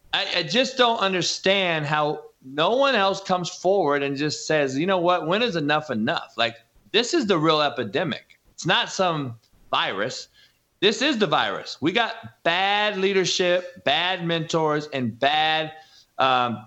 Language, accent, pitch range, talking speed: English, American, 150-190 Hz, 160 wpm